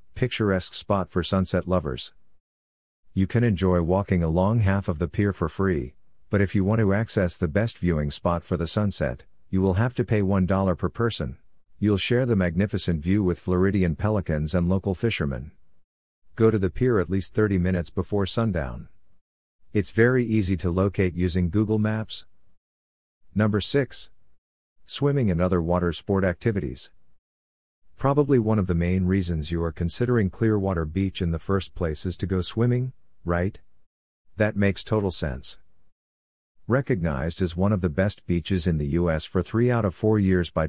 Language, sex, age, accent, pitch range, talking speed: English, male, 50-69, American, 85-105 Hz, 170 wpm